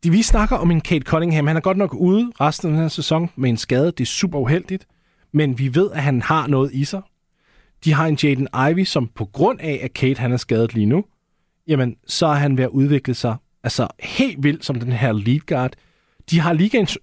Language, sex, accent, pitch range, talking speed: Danish, male, native, 130-175 Hz, 240 wpm